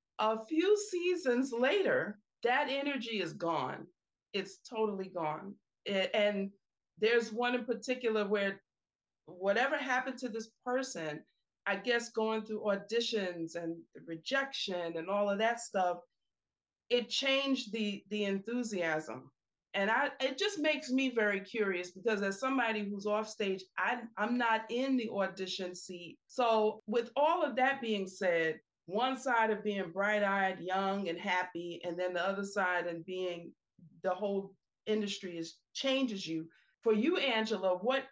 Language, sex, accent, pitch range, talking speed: English, female, American, 190-245 Hz, 150 wpm